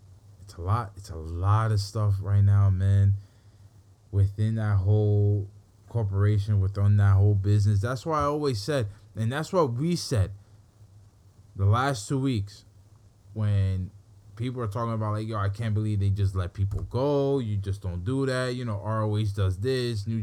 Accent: American